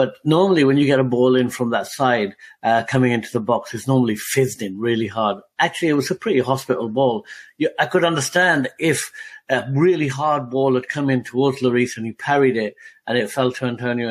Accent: British